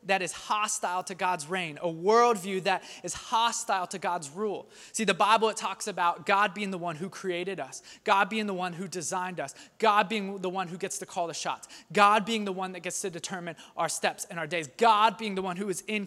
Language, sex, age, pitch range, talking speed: English, male, 20-39, 175-210 Hz, 240 wpm